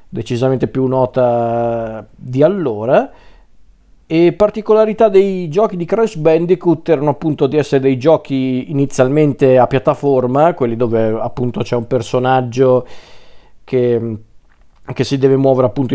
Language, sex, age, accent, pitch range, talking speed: Italian, male, 40-59, native, 130-155 Hz, 125 wpm